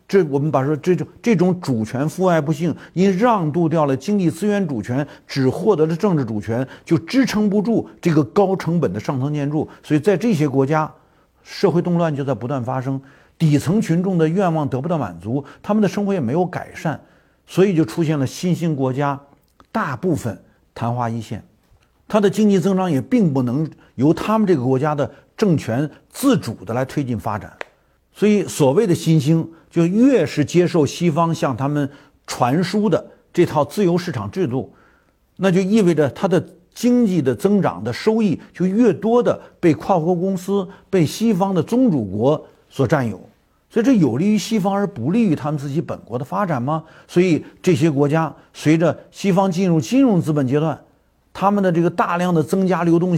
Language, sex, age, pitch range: Chinese, male, 50-69, 145-195 Hz